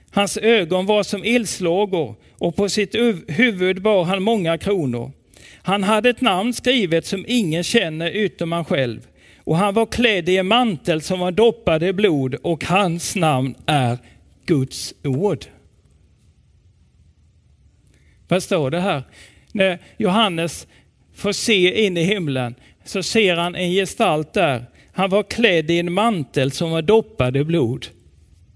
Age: 40-59